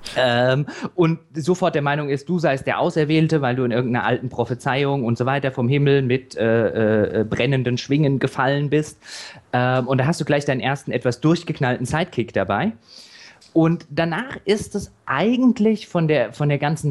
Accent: German